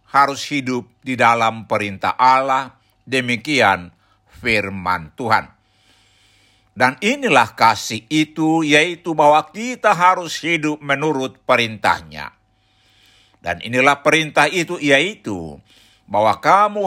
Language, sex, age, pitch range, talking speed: Indonesian, male, 60-79, 110-155 Hz, 95 wpm